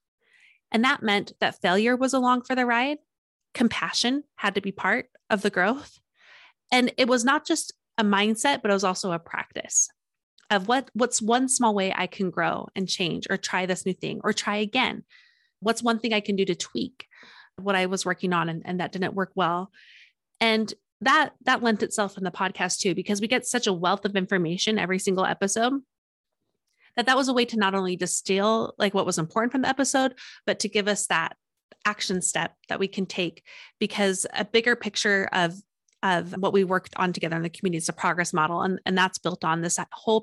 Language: English